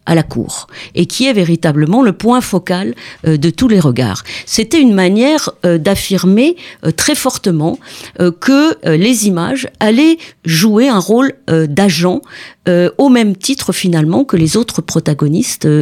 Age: 40-59